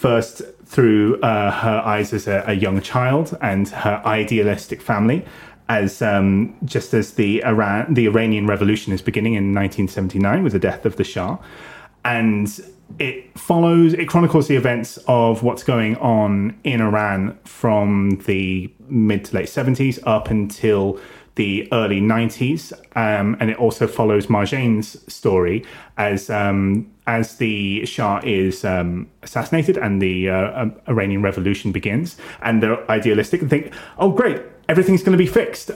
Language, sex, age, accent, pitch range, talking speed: English, male, 30-49, British, 100-120 Hz, 155 wpm